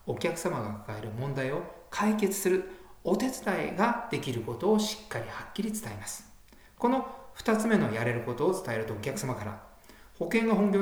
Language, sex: Japanese, male